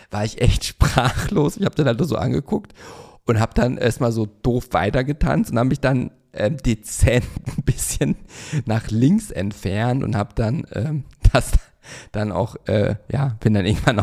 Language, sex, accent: German, male, German